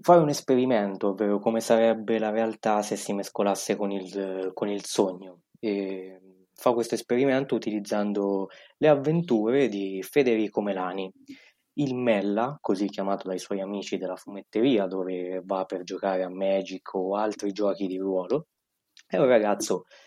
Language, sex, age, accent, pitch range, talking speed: Italian, male, 20-39, native, 100-135 Hz, 140 wpm